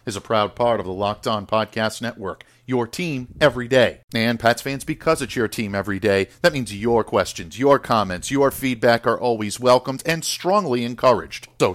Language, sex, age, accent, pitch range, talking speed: English, male, 50-69, American, 115-145 Hz, 195 wpm